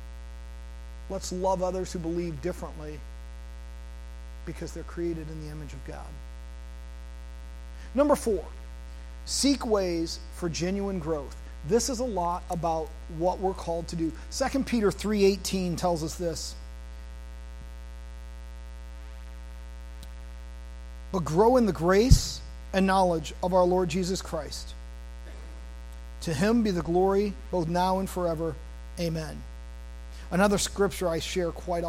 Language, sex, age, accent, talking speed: English, male, 40-59, American, 120 wpm